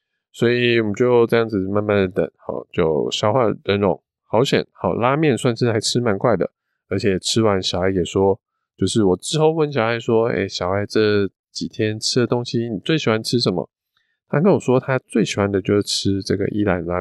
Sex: male